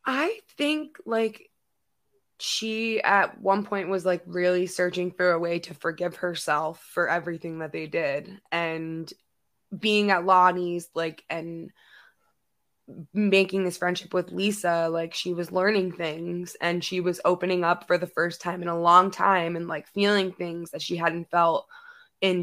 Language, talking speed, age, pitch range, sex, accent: English, 160 wpm, 20-39, 165-195 Hz, female, American